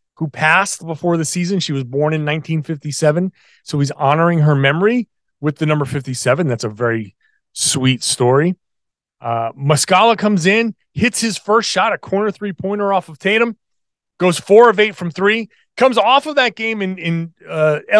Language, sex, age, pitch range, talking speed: English, male, 30-49, 145-210 Hz, 175 wpm